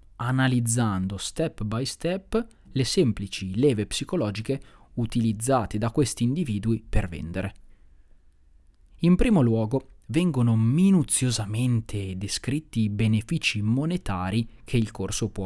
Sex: male